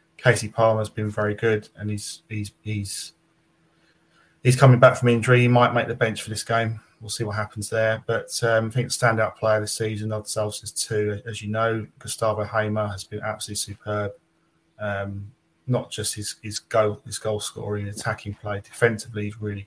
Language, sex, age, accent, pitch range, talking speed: English, male, 20-39, British, 105-110 Hz, 190 wpm